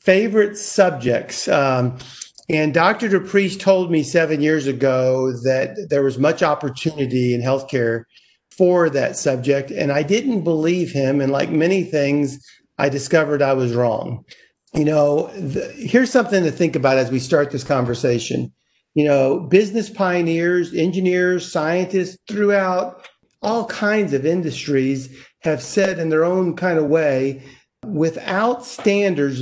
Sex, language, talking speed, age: male, English, 140 wpm, 50-69